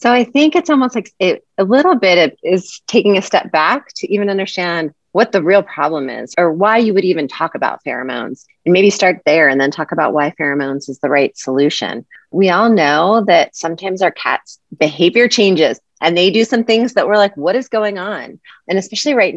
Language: English